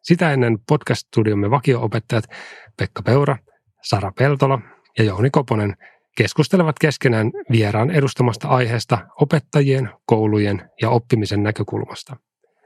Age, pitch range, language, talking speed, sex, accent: 30-49, 110-130 Hz, Finnish, 100 wpm, male, native